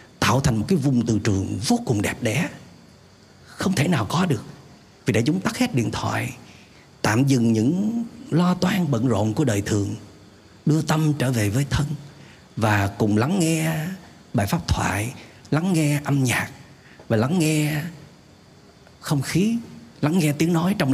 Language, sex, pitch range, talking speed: Vietnamese, male, 110-155 Hz, 170 wpm